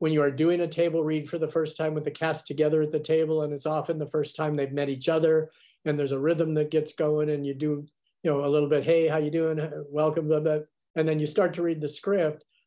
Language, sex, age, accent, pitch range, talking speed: English, male, 50-69, American, 145-165 Hz, 280 wpm